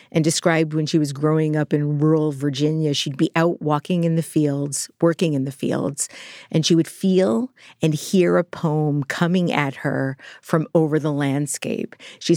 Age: 40-59